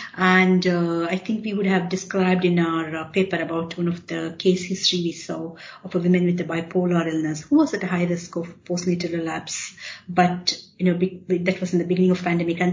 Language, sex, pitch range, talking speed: English, female, 170-190 Hz, 220 wpm